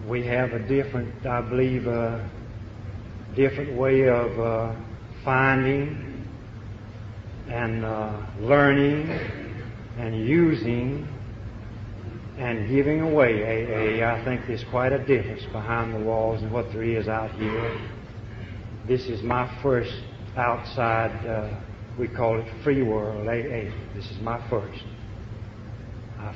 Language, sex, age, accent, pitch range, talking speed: English, male, 60-79, American, 110-120 Hz, 120 wpm